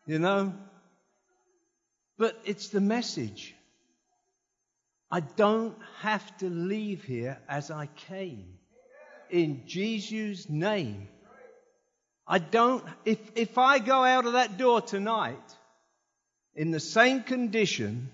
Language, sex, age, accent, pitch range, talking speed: English, male, 50-69, British, 135-225 Hz, 110 wpm